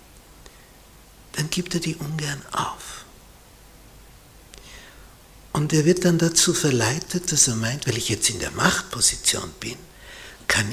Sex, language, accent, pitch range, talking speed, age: male, German, Austrian, 110-160 Hz, 125 wpm, 60-79